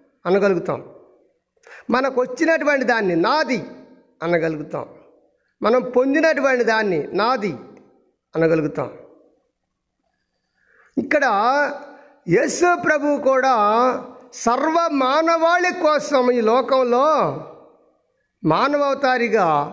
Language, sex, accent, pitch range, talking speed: Telugu, male, native, 195-270 Hz, 60 wpm